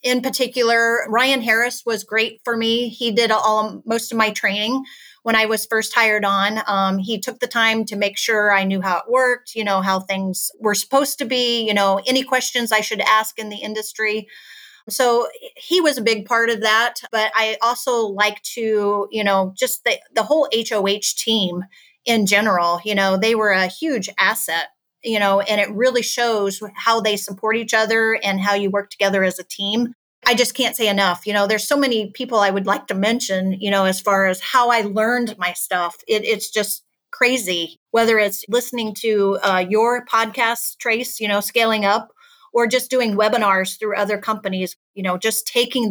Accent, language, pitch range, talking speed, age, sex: American, English, 200-235 Hz, 200 wpm, 30-49, female